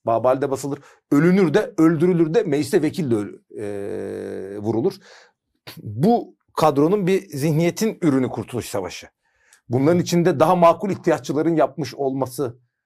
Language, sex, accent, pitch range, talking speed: Turkish, male, native, 110-155 Hz, 120 wpm